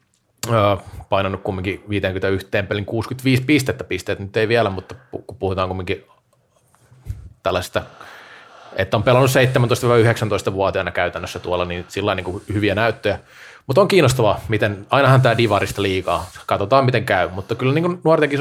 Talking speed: 135 wpm